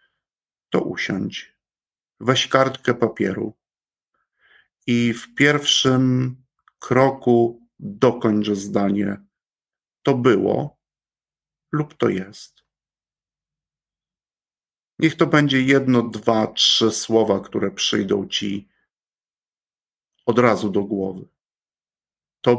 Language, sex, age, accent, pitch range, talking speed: Polish, male, 50-69, native, 110-130 Hz, 80 wpm